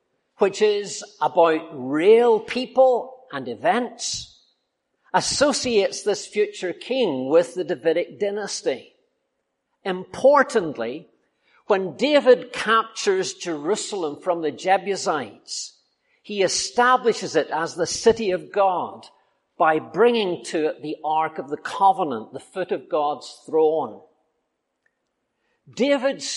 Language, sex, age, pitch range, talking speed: English, male, 50-69, 170-250 Hz, 105 wpm